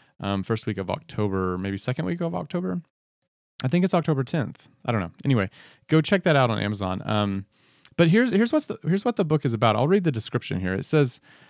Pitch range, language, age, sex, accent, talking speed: 110-155 Hz, English, 30-49, male, American, 230 wpm